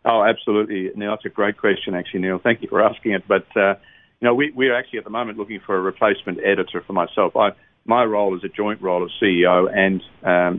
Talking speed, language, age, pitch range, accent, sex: 240 wpm, English, 50-69, 90-105 Hz, Australian, male